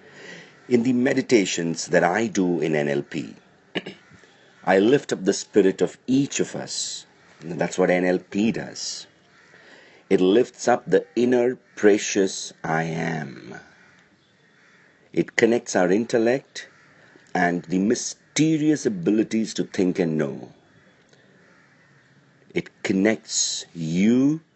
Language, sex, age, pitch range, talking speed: English, male, 50-69, 85-115 Hz, 110 wpm